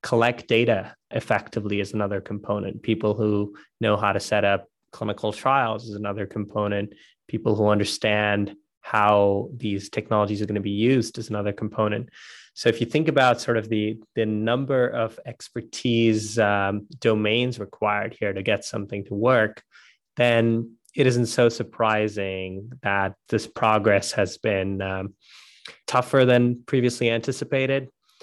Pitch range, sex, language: 100-115 Hz, male, English